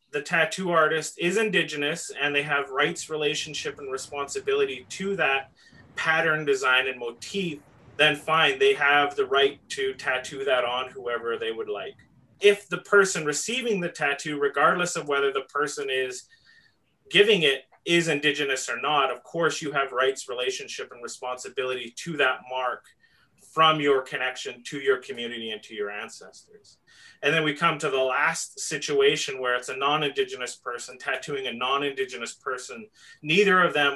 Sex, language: male, English